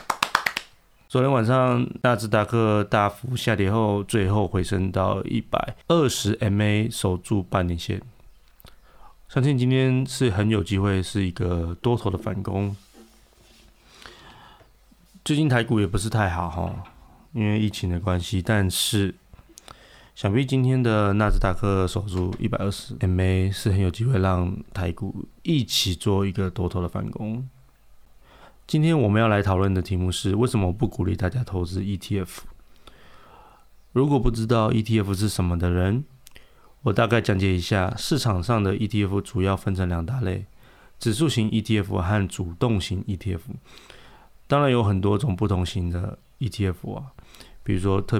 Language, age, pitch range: Chinese, 30-49, 95-115 Hz